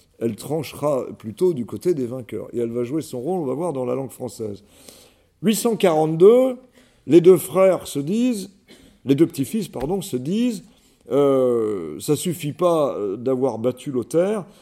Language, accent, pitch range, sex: French, French, 130-185 Hz, male